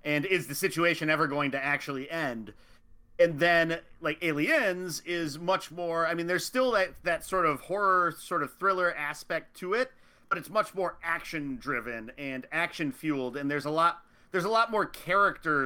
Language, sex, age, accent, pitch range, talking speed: English, male, 40-59, American, 140-180 Hz, 190 wpm